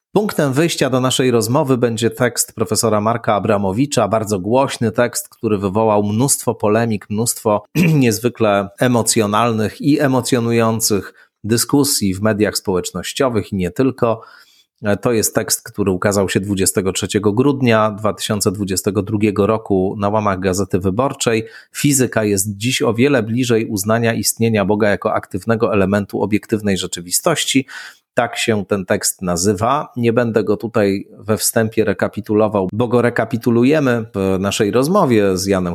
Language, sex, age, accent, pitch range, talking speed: Polish, male, 30-49, native, 100-120 Hz, 130 wpm